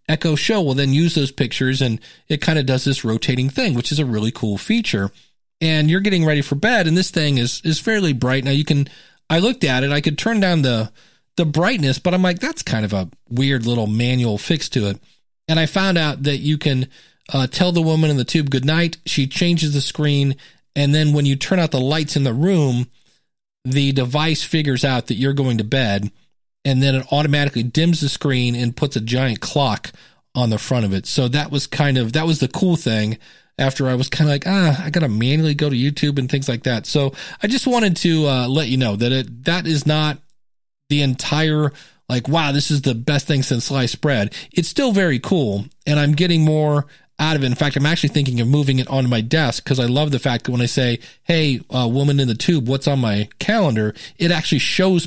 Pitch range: 125-160 Hz